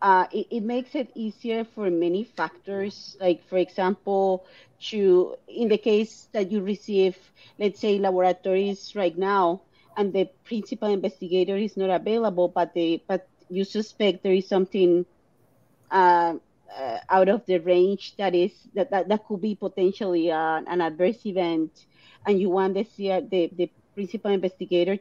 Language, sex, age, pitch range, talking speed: English, female, 40-59, 180-205 Hz, 160 wpm